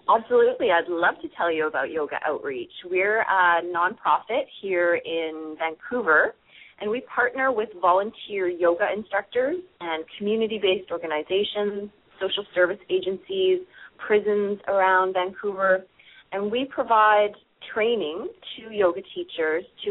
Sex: female